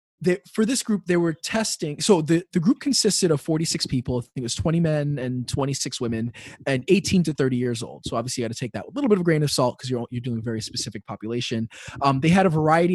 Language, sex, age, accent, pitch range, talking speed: English, male, 20-39, American, 125-165 Hz, 275 wpm